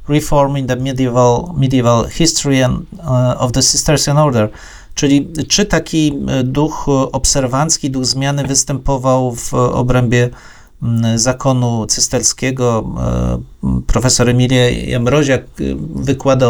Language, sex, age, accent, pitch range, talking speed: Polish, male, 40-59, native, 115-145 Hz, 115 wpm